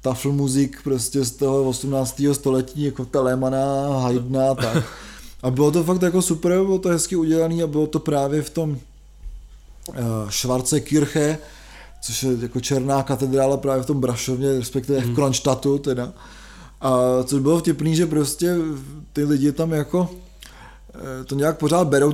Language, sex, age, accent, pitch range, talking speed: Czech, male, 20-39, native, 130-150 Hz, 155 wpm